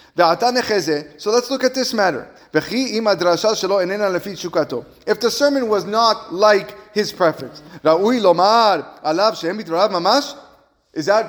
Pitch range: 175-230 Hz